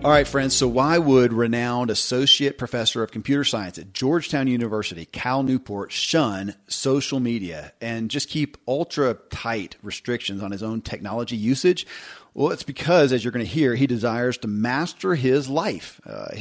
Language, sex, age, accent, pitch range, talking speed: English, male, 40-59, American, 110-140 Hz, 170 wpm